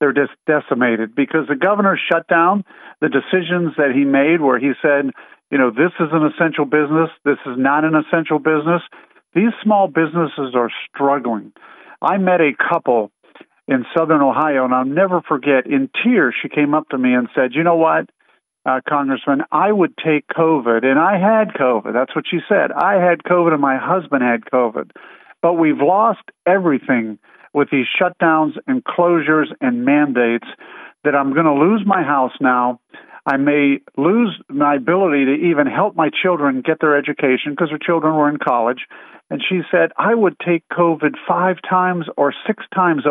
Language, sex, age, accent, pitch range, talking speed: English, male, 50-69, American, 140-180 Hz, 180 wpm